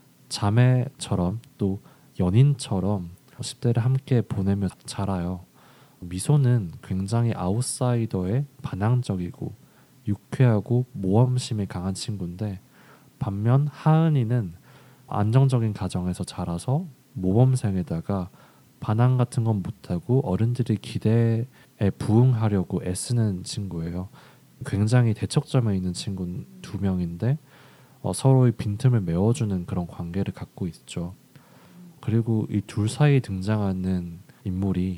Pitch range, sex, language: 95-130 Hz, male, Korean